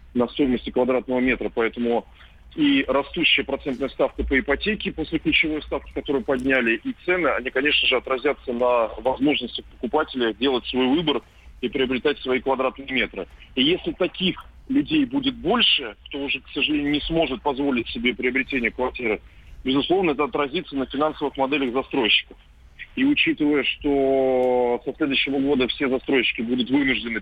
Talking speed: 145 wpm